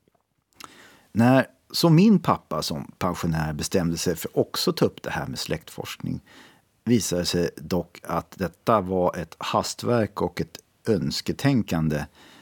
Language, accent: Swedish, native